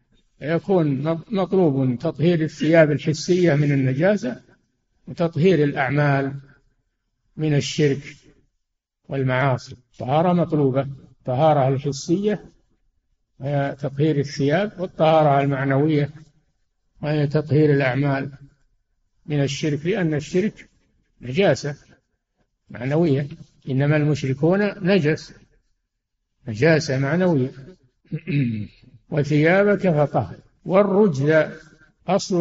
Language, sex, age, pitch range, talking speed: Arabic, male, 60-79, 135-165 Hz, 70 wpm